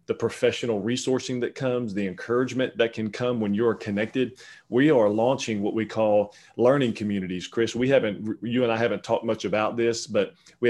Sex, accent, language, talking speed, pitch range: male, American, English, 190 wpm, 105-125 Hz